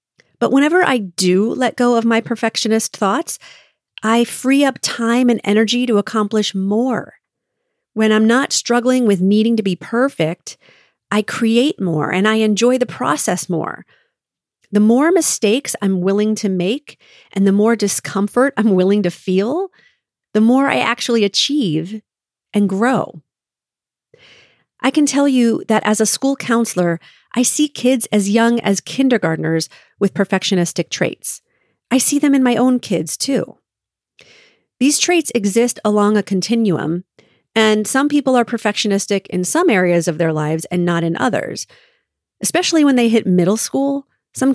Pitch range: 195-250 Hz